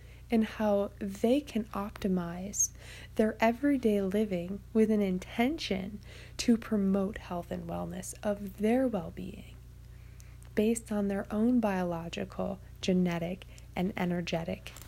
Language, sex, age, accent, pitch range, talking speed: English, female, 20-39, American, 175-220 Hz, 110 wpm